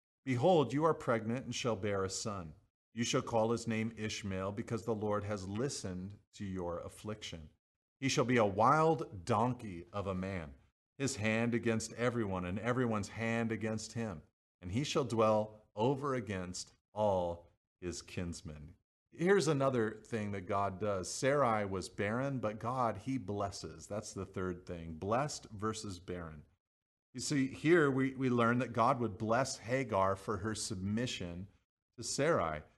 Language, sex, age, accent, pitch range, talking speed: English, male, 40-59, American, 95-125 Hz, 155 wpm